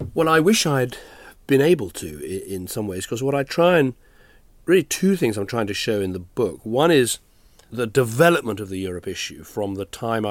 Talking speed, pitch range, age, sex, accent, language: 210 wpm, 105-125 Hz, 40-59, male, British, English